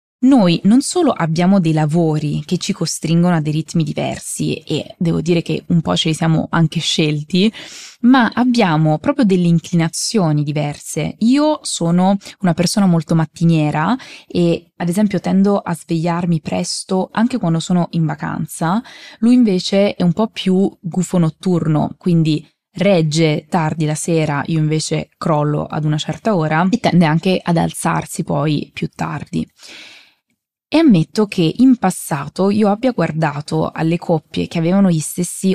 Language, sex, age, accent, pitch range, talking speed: Italian, female, 20-39, native, 160-190 Hz, 150 wpm